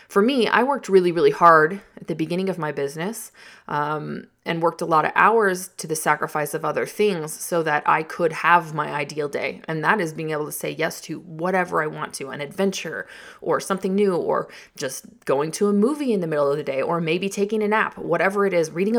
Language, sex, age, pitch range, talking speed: English, female, 20-39, 155-200 Hz, 230 wpm